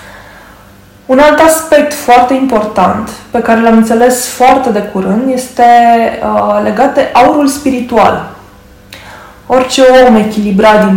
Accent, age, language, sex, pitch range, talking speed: native, 20-39, Romanian, female, 190-245 Hz, 115 wpm